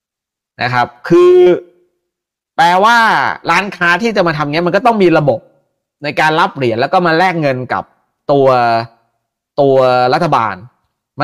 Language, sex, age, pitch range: Thai, male, 30-49, 135-180 Hz